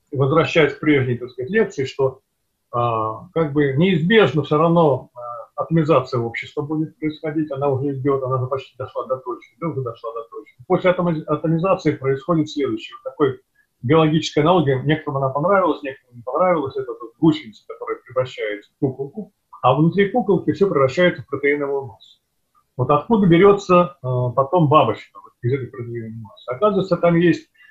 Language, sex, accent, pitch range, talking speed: Russian, male, native, 135-180 Hz, 160 wpm